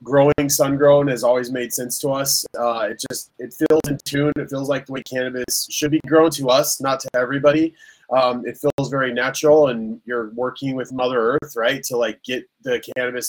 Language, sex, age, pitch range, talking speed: English, male, 20-39, 125-150 Hz, 210 wpm